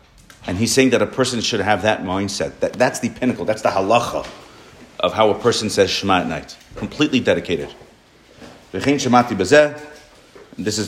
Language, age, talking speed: English, 40-59, 165 wpm